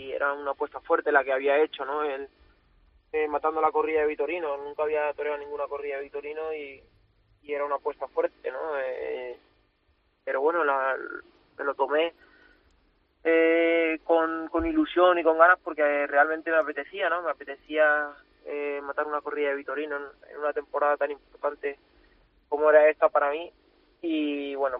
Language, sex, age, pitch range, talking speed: Spanish, male, 20-39, 135-155 Hz, 170 wpm